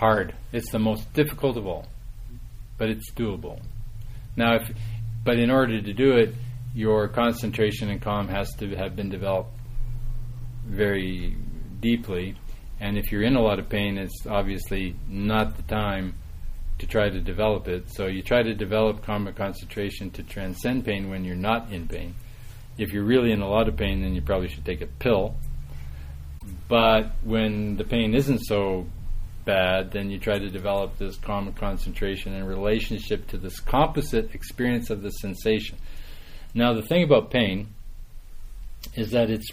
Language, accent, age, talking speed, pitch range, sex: English, American, 40-59, 165 wpm, 95-115 Hz, male